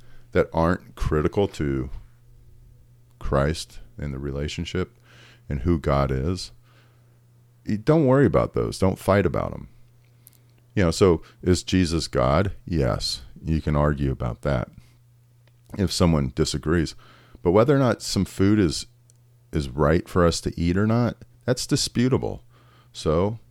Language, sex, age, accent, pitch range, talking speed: English, male, 40-59, American, 85-120 Hz, 135 wpm